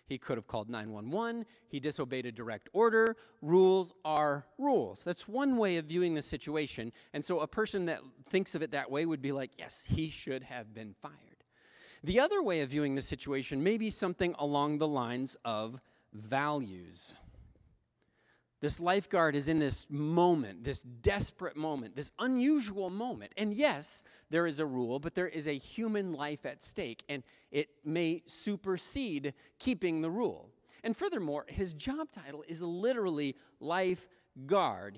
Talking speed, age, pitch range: 165 wpm, 30-49, 140-190 Hz